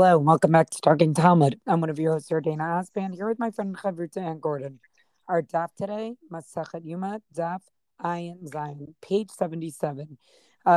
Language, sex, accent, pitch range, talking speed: English, female, American, 160-195 Hz, 175 wpm